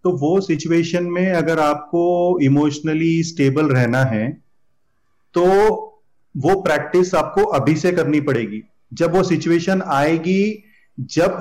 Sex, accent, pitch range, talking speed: male, native, 145-175 Hz, 120 wpm